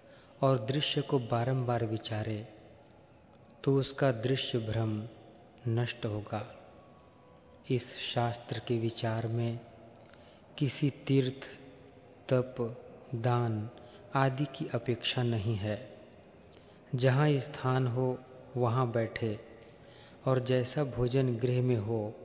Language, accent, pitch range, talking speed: Hindi, native, 115-130 Hz, 95 wpm